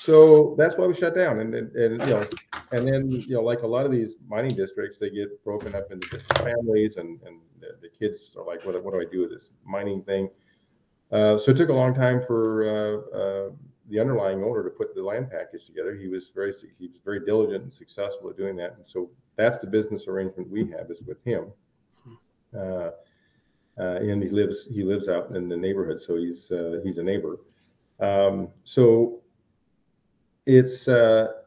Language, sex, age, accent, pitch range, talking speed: English, male, 50-69, American, 95-120 Hz, 200 wpm